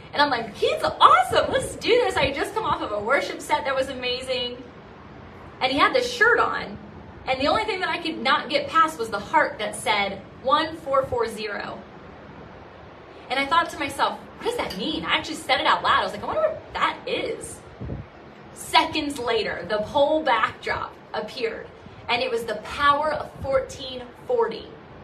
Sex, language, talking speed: female, English, 185 wpm